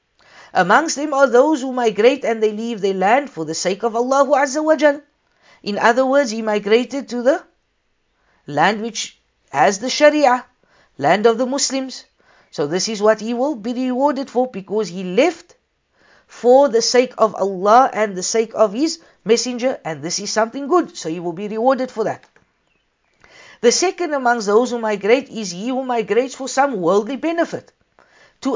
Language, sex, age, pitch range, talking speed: English, female, 50-69, 205-270 Hz, 175 wpm